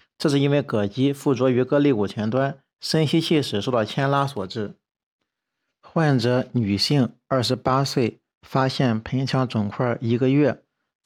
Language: Chinese